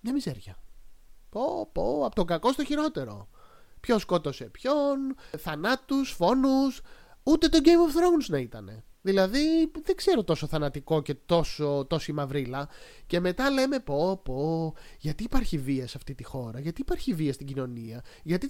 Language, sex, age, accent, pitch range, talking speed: Greek, male, 30-49, native, 140-205 Hz, 155 wpm